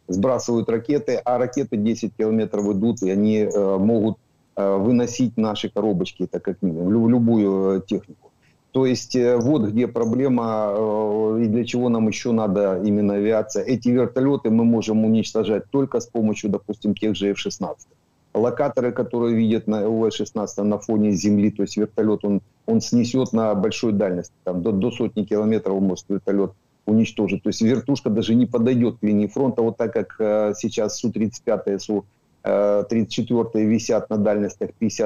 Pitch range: 105-125 Hz